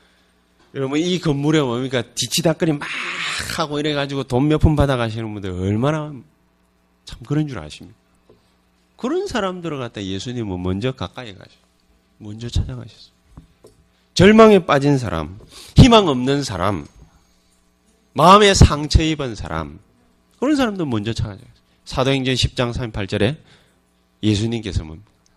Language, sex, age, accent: Korean, male, 30-49, native